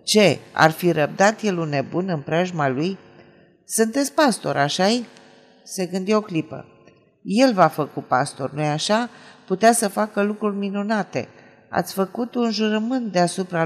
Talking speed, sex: 145 wpm, female